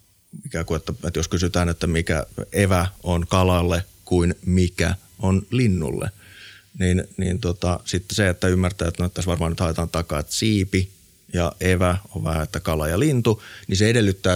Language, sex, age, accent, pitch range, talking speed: Finnish, male, 30-49, native, 85-100 Hz, 170 wpm